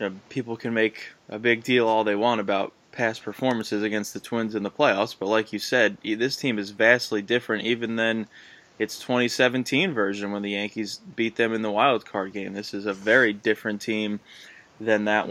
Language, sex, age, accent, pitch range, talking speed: English, male, 20-39, American, 105-115 Hz, 205 wpm